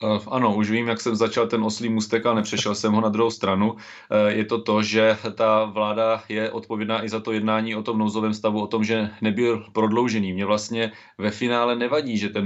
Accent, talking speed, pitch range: native, 210 wpm, 105-110 Hz